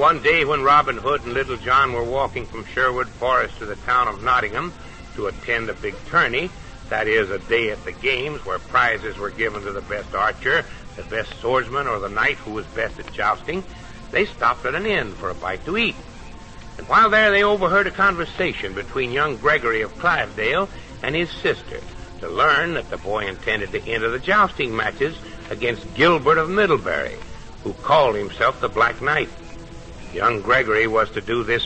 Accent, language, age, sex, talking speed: American, English, 60-79, male, 190 wpm